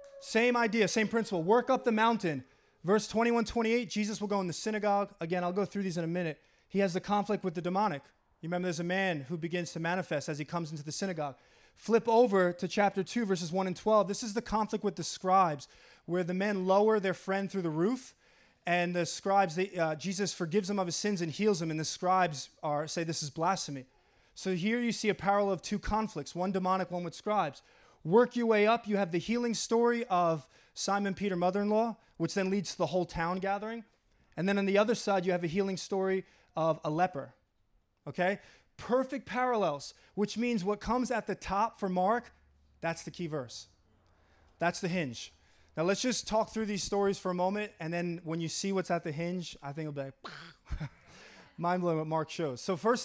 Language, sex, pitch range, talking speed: English, male, 165-210 Hz, 215 wpm